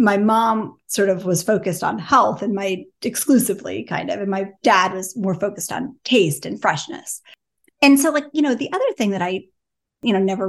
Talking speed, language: 205 wpm, English